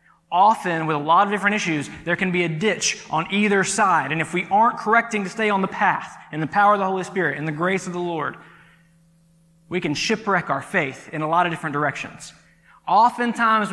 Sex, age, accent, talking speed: male, 20-39, American, 220 wpm